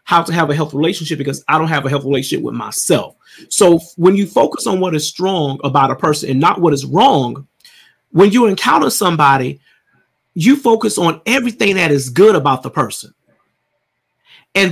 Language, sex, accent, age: English, male, American, 30-49